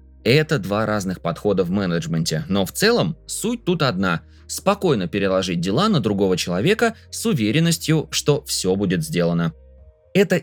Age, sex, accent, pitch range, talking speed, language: 20-39, male, native, 95-145 Hz, 145 wpm, Russian